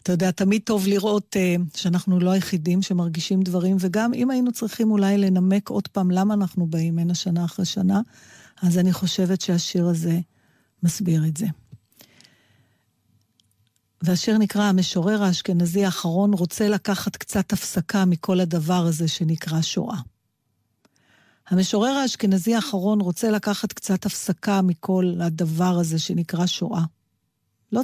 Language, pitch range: Hebrew, 175-205 Hz